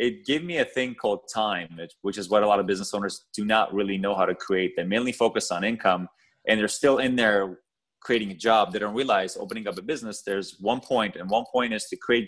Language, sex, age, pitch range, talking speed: English, male, 20-39, 100-115 Hz, 250 wpm